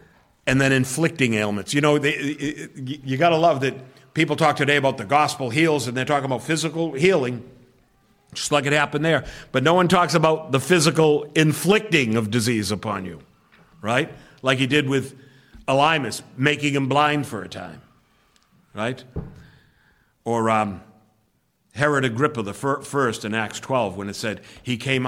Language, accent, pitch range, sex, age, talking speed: English, American, 110-145 Hz, male, 50-69, 165 wpm